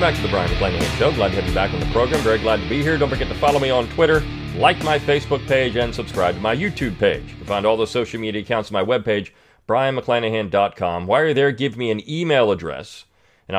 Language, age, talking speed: English, 40-59, 250 wpm